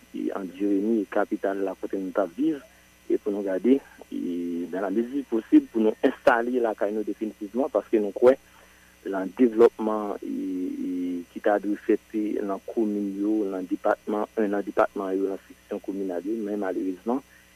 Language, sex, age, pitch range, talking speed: English, male, 50-69, 100-120 Hz, 165 wpm